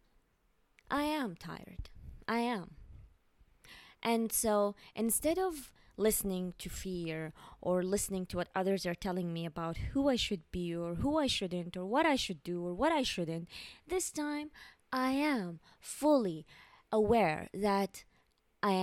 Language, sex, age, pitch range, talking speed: English, female, 20-39, 180-250 Hz, 145 wpm